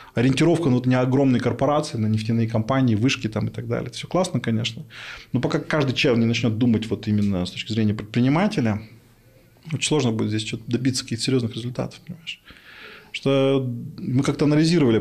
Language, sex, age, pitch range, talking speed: Russian, male, 20-39, 110-135 Hz, 150 wpm